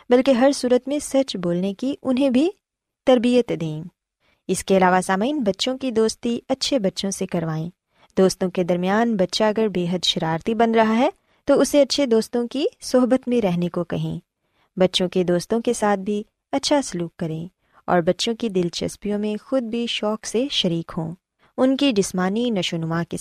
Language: Urdu